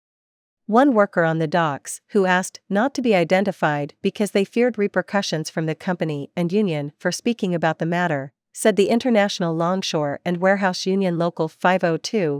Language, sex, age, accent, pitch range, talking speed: English, female, 40-59, American, 160-200 Hz, 165 wpm